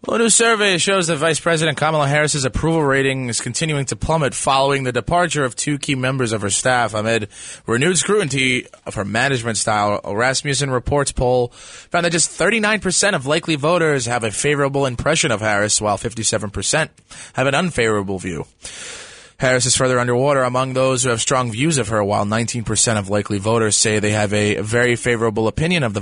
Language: English